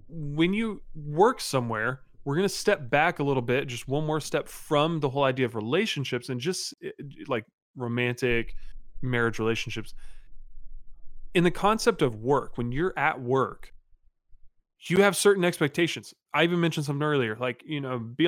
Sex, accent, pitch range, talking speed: male, American, 115-170 Hz, 165 wpm